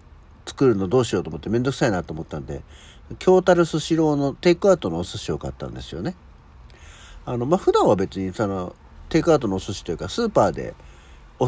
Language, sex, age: Japanese, male, 60-79